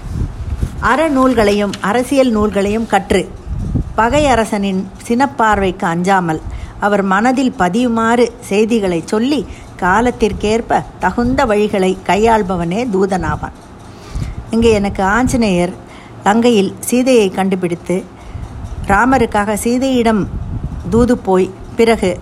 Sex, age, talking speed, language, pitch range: female, 50-69, 80 wpm, Tamil, 185-235 Hz